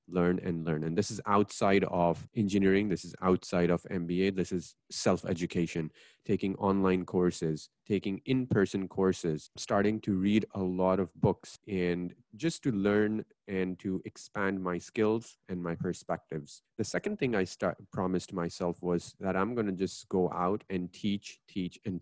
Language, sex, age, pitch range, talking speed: English, male, 30-49, 90-105 Hz, 160 wpm